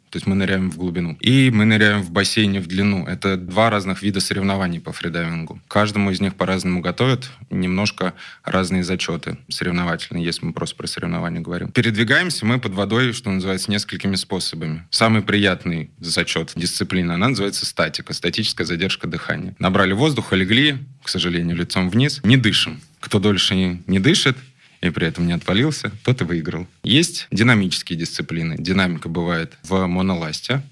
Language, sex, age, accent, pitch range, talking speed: Russian, male, 20-39, native, 85-110 Hz, 155 wpm